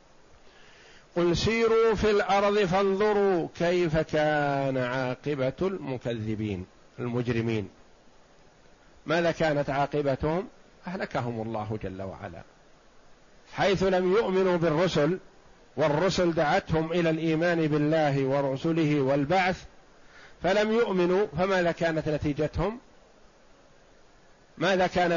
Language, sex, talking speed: Arabic, male, 85 wpm